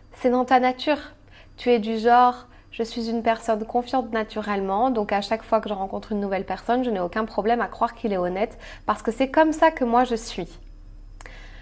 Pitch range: 215-255 Hz